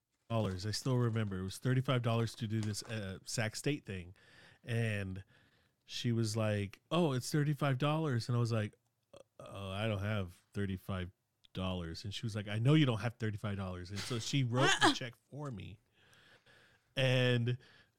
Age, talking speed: 40-59, 160 wpm